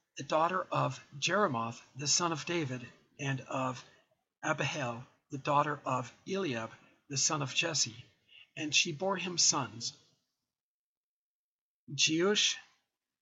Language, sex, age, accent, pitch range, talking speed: English, male, 50-69, American, 135-170 Hz, 115 wpm